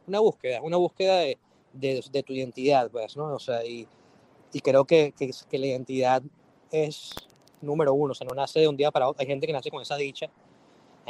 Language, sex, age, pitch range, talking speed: Spanish, male, 20-39, 135-165 Hz, 220 wpm